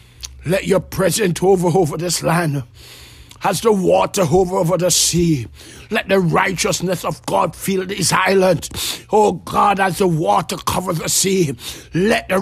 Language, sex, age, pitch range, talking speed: English, male, 60-79, 180-235 Hz, 155 wpm